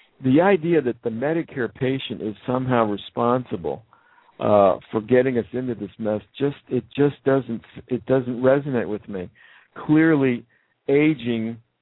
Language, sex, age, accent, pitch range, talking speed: English, male, 60-79, American, 110-135 Hz, 135 wpm